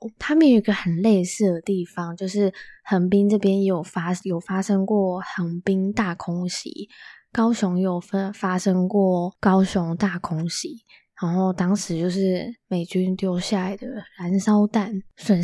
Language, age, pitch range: Chinese, 20-39, 185-215 Hz